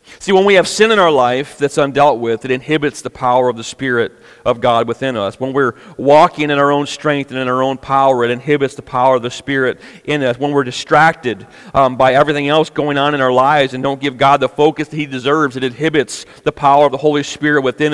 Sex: male